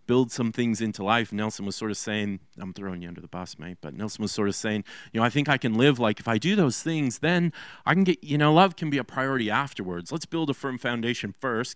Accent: American